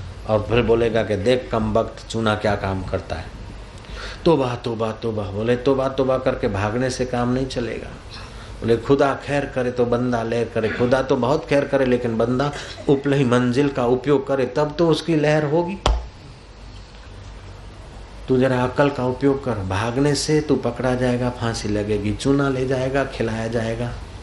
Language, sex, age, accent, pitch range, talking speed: Hindi, male, 50-69, native, 105-130 Hz, 140 wpm